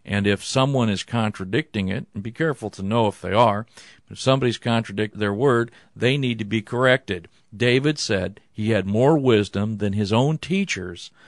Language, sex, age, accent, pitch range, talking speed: English, male, 50-69, American, 100-125 Hz, 180 wpm